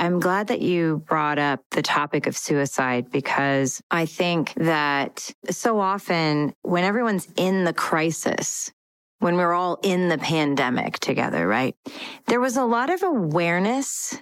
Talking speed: 150 wpm